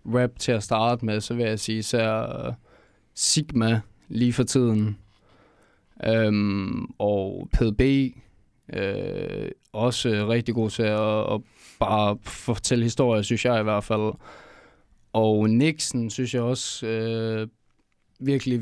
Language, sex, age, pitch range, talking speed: Danish, male, 20-39, 110-125 Hz, 125 wpm